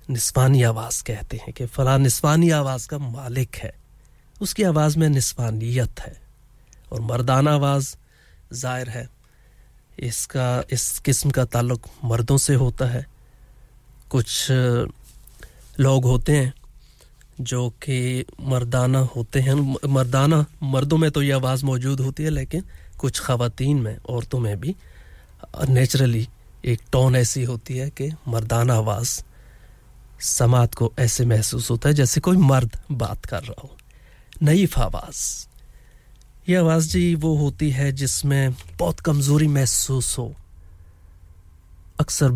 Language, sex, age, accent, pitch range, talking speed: English, male, 30-49, Indian, 120-135 Hz, 130 wpm